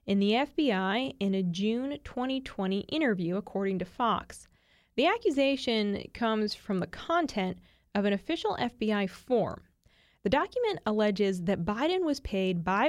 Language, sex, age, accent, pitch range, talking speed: English, female, 20-39, American, 195-260 Hz, 140 wpm